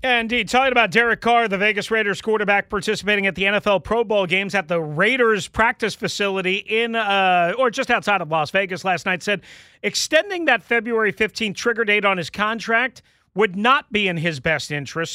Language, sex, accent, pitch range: English, male, American, 150-205 Hz